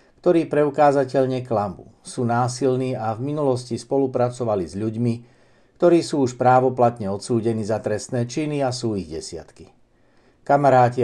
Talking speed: 130 wpm